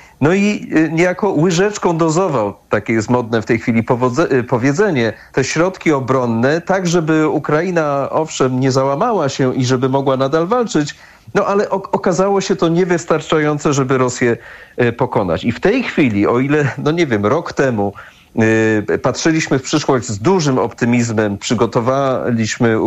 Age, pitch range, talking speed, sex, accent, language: 40-59, 110-150 Hz, 140 wpm, male, native, Polish